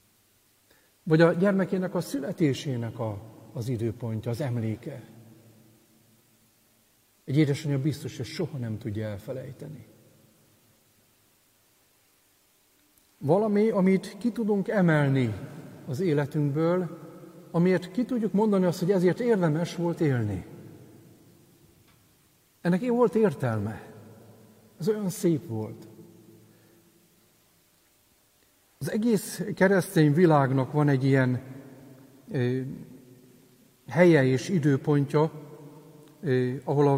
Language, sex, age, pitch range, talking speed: Hungarian, male, 50-69, 115-160 Hz, 90 wpm